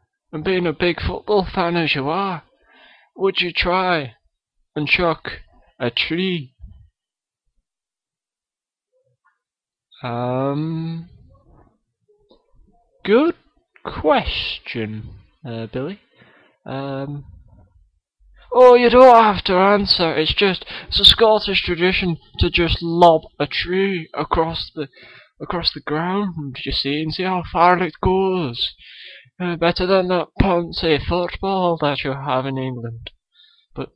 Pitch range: 135-185 Hz